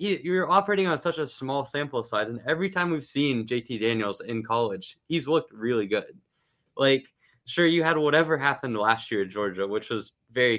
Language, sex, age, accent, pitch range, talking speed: English, male, 10-29, American, 110-145 Hz, 195 wpm